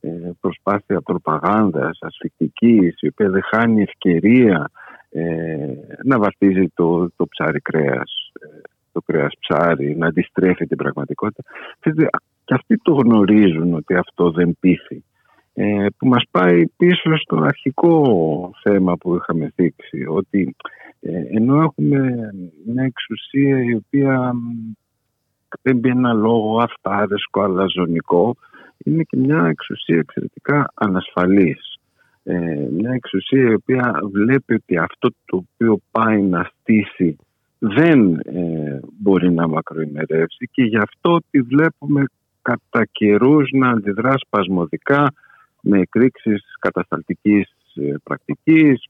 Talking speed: 110 wpm